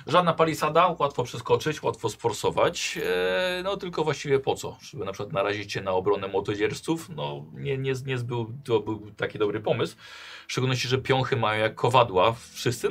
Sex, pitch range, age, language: male, 105-145 Hz, 40-59, Polish